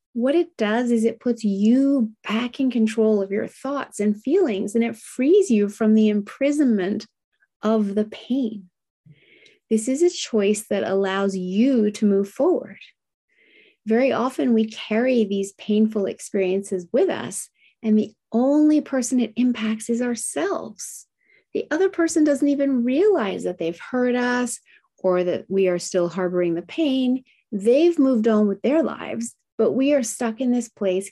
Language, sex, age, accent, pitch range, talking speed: English, female, 30-49, American, 200-265 Hz, 160 wpm